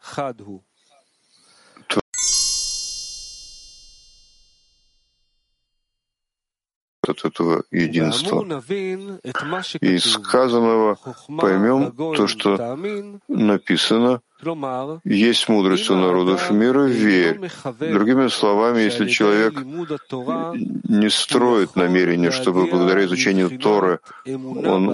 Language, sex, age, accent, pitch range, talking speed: Russian, male, 50-69, native, 100-135 Hz, 65 wpm